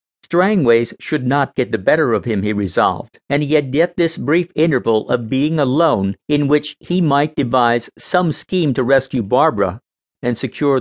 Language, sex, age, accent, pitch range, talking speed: English, male, 50-69, American, 125-165 Hz, 180 wpm